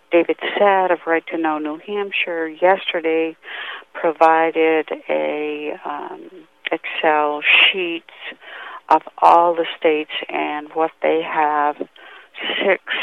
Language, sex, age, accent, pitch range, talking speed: English, female, 60-79, American, 150-165 Hz, 105 wpm